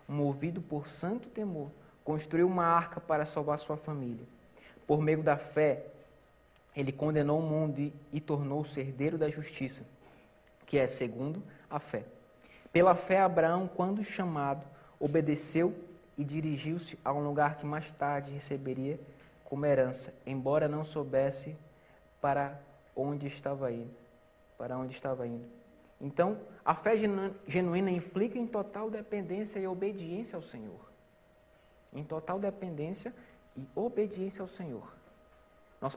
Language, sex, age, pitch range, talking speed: Portuguese, male, 20-39, 145-185 Hz, 125 wpm